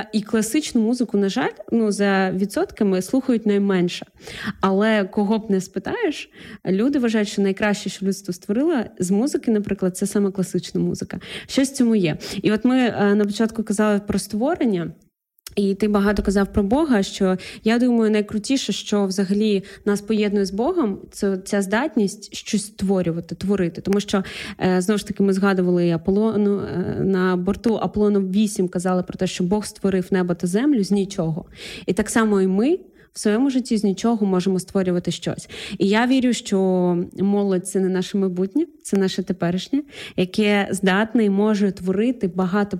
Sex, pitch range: female, 185-215 Hz